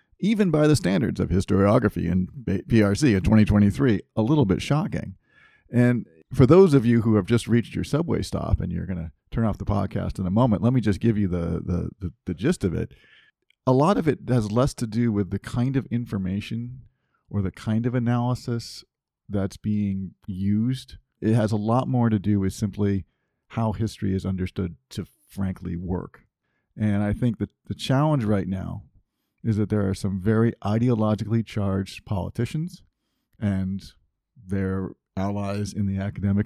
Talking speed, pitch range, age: 180 wpm, 95-120 Hz, 40-59